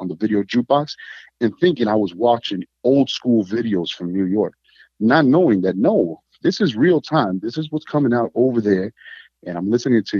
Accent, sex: American, male